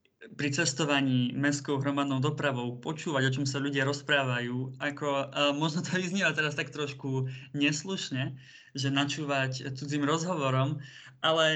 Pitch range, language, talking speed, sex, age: 130-150 Hz, Slovak, 130 wpm, male, 20-39